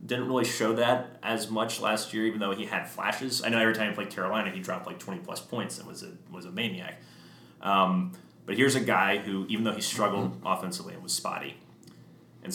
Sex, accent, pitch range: male, American, 95-125 Hz